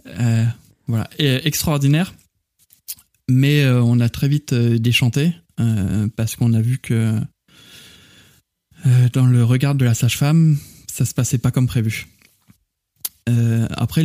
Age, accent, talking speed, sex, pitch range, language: 20-39, French, 145 wpm, male, 115-145 Hz, French